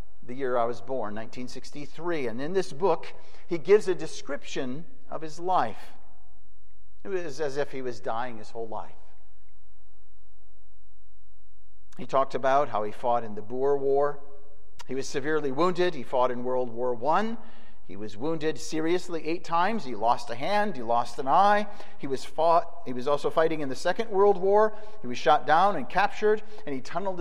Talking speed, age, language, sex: 180 wpm, 50-69, English, male